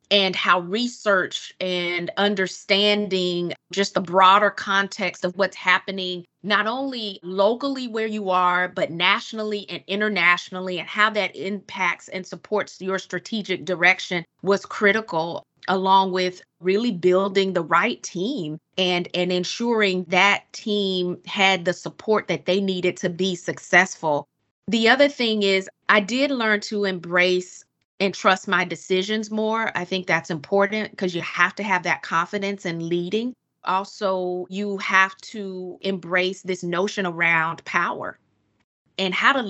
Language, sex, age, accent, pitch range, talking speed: English, female, 20-39, American, 175-200 Hz, 140 wpm